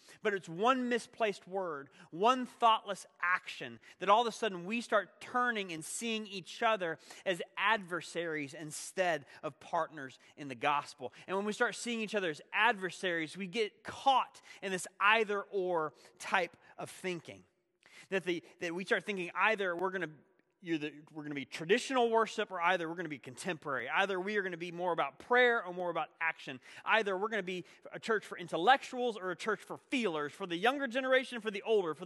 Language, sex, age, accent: English, male, 30-49, American